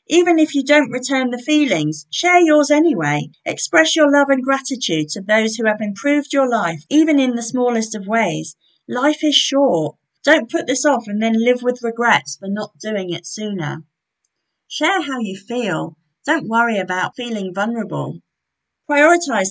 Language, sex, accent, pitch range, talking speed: English, female, British, 190-280 Hz, 170 wpm